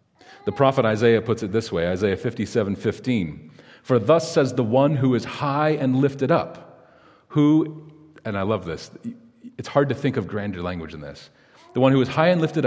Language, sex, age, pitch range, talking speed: English, male, 40-59, 110-155 Hz, 200 wpm